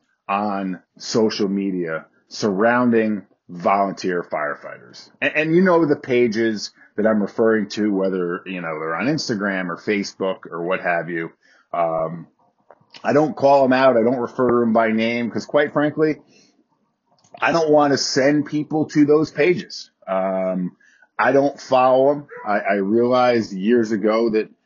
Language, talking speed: English, 155 wpm